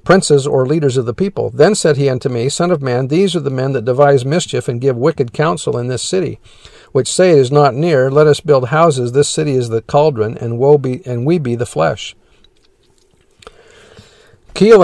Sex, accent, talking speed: male, American, 210 wpm